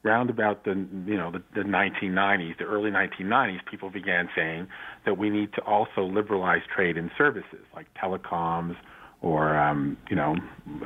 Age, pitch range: 50-69, 90-105 Hz